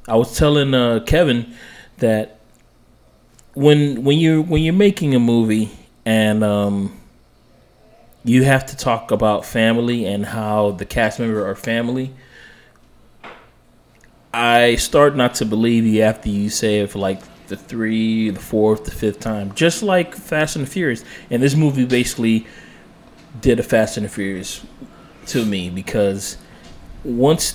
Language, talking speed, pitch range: English, 150 wpm, 105-125 Hz